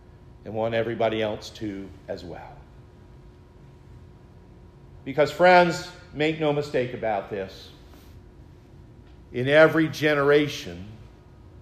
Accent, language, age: American, English, 50-69